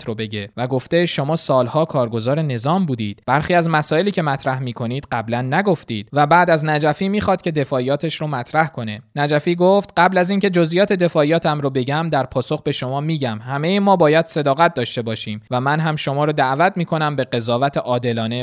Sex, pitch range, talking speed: male, 130-175 Hz, 190 wpm